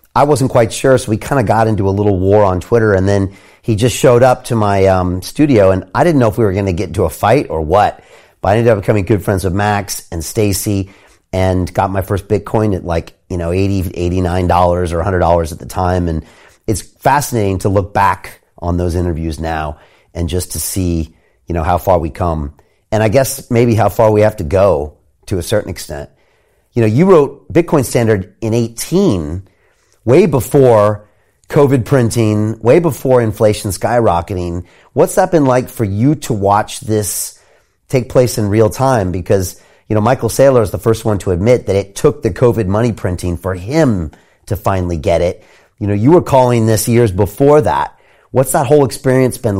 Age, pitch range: 40-59, 90-115 Hz